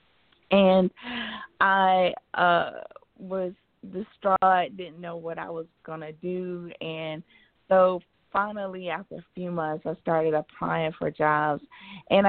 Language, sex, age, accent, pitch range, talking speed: English, female, 20-39, American, 160-190 Hz, 125 wpm